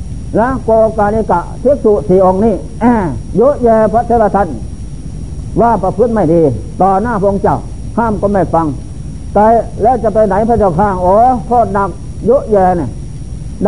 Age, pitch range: 60-79, 180-220 Hz